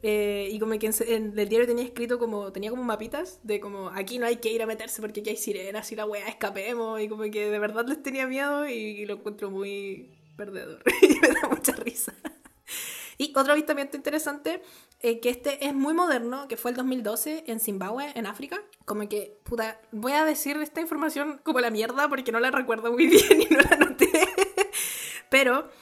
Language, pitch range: Spanish, 220-295 Hz